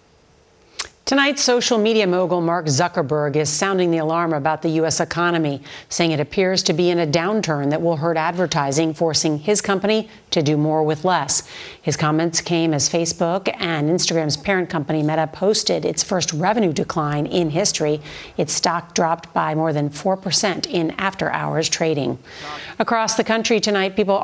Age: 40-59